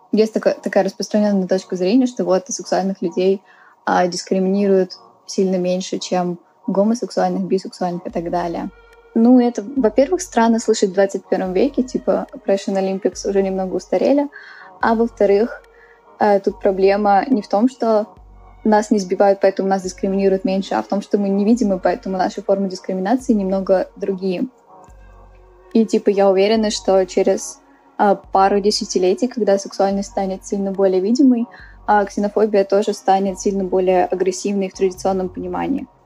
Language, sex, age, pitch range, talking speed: Russian, female, 10-29, 190-220 Hz, 145 wpm